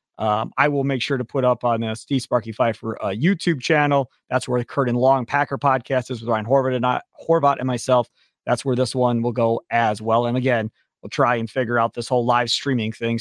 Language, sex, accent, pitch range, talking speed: English, male, American, 125-175 Hz, 225 wpm